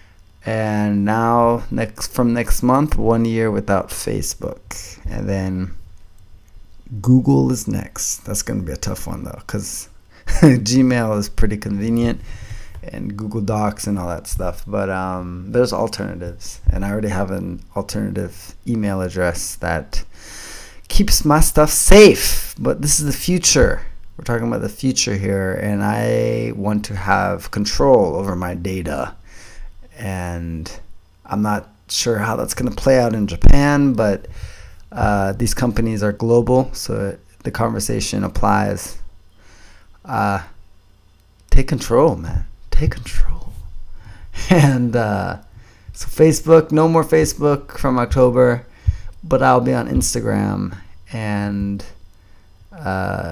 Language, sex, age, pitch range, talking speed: English, male, 20-39, 90-115 Hz, 130 wpm